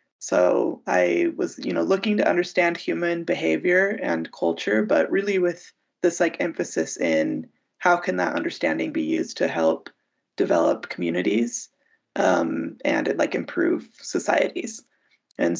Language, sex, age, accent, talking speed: English, female, 20-39, American, 135 wpm